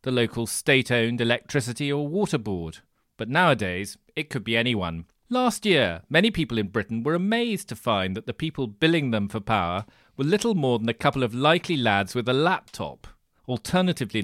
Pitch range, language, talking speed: 105-155 Hz, English, 180 wpm